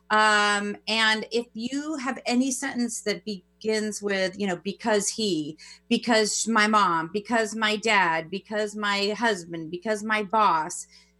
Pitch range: 195-240 Hz